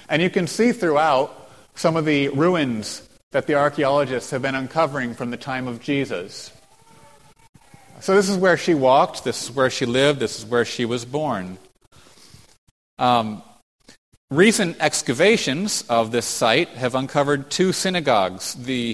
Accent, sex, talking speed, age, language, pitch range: American, male, 150 wpm, 40-59, English, 120-150 Hz